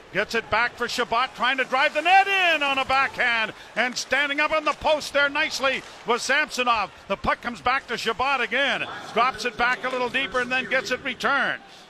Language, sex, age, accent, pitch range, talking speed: English, male, 50-69, American, 220-275 Hz, 210 wpm